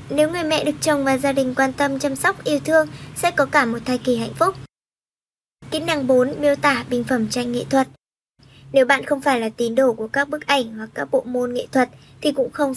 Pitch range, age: 250-295 Hz, 20-39